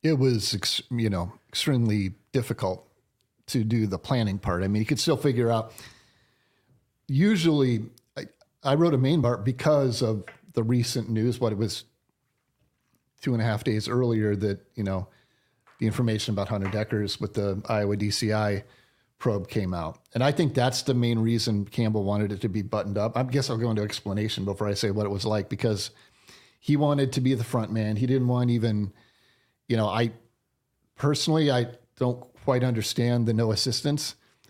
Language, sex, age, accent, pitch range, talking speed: English, male, 40-59, American, 105-125 Hz, 180 wpm